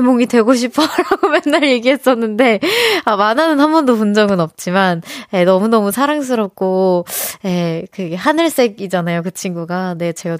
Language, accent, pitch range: Korean, native, 185-260 Hz